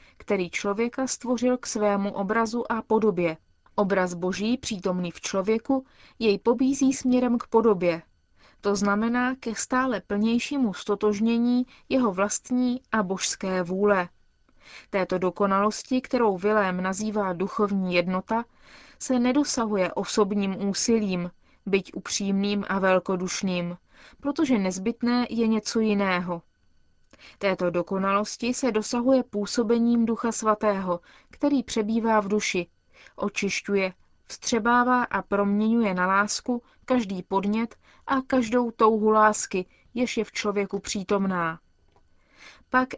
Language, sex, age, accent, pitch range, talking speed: Czech, female, 20-39, native, 190-235 Hz, 110 wpm